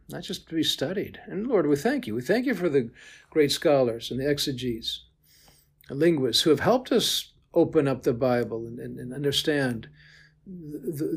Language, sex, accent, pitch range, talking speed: English, male, American, 125-155 Hz, 190 wpm